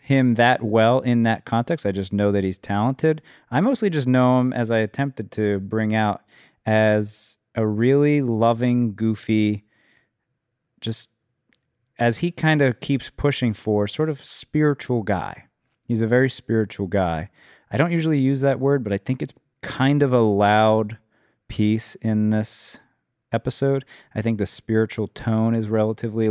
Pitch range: 105-130 Hz